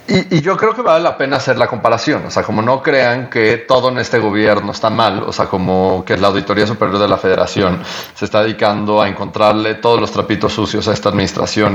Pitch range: 100-125 Hz